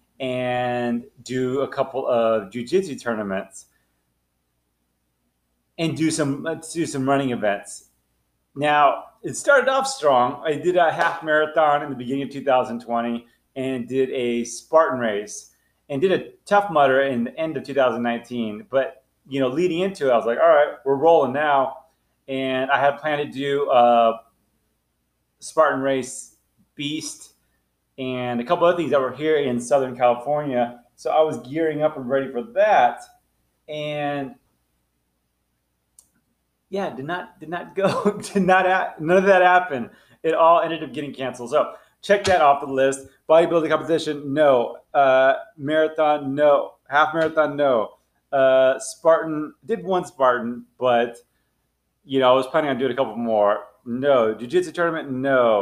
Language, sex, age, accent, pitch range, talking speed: English, male, 30-49, American, 120-155 Hz, 155 wpm